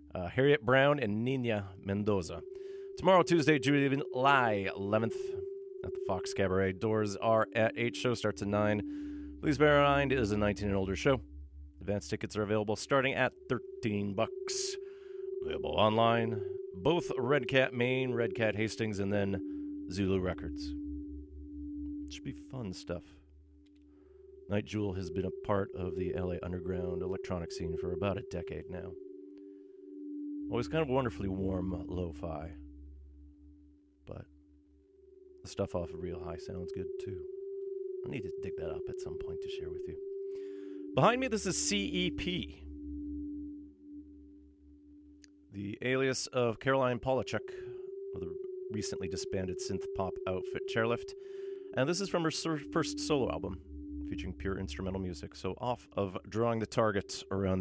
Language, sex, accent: English, male, American